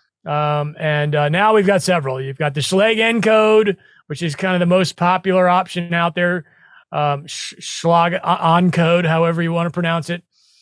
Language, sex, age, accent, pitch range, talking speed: English, male, 30-49, American, 155-195 Hz, 180 wpm